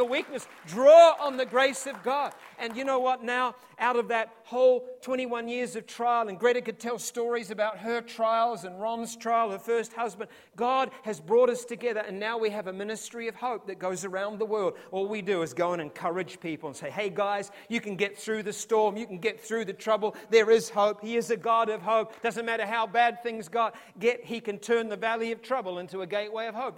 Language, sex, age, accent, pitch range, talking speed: English, male, 40-59, Australian, 165-230 Hz, 235 wpm